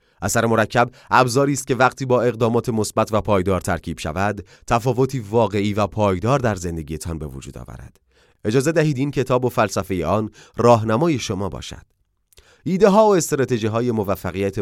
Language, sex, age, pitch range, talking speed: Persian, male, 30-49, 95-130 Hz, 150 wpm